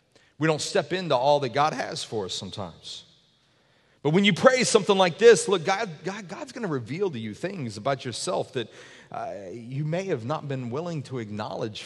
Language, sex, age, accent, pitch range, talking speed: English, male, 40-59, American, 140-220 Hz, 200 wpm